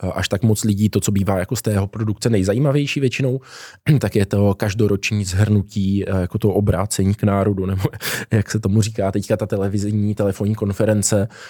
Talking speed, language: 170 wpm, Czech